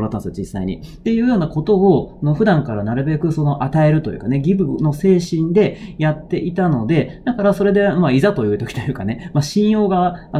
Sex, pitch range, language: male, 125-190 Hz, Japanese